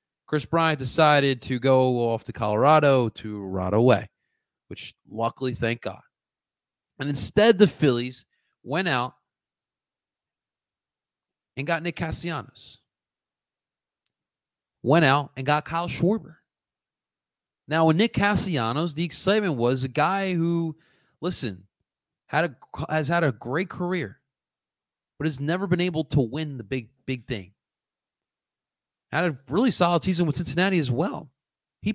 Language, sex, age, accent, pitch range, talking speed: English, male, 30-49, American, 130-175 Hz, 130 wpm